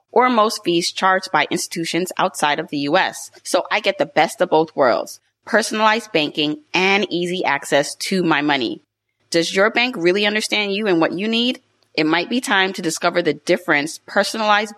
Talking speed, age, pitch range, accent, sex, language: 185 wpm, 30-49, 160-210 Hz, American, female, English